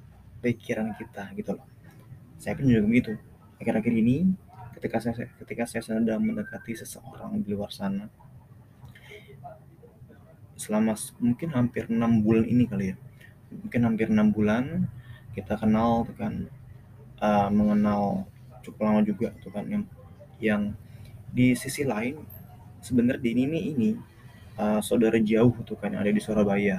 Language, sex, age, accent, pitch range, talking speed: Indonesian, male, 20-39, native, 105-125 Hz, 135 wpm